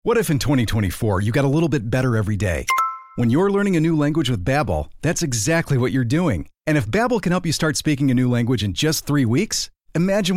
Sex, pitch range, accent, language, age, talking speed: male, 120-165 Hz, American, English, 40-59, 235 wpm